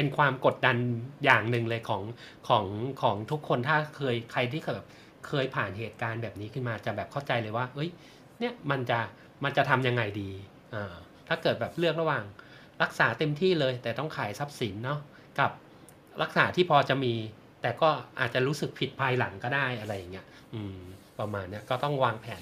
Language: Thai